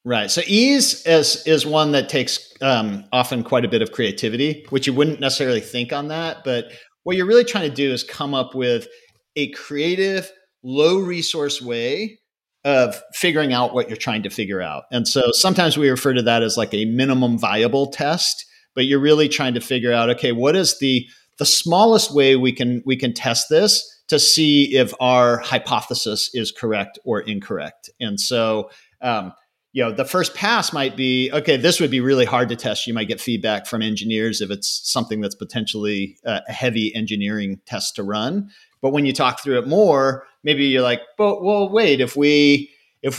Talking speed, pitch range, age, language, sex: 195 wpm, 120-155 Hz, 40-59, English, male